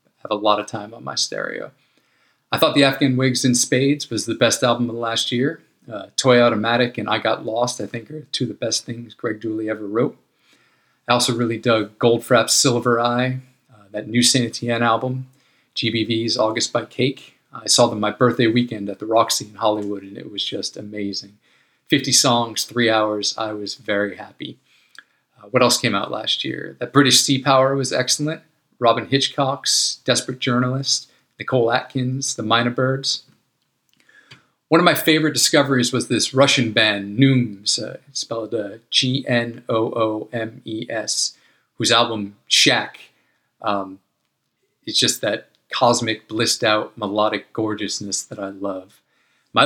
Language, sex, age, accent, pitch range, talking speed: English, male, 40-59, American, 110-130 Hz, 160 wpm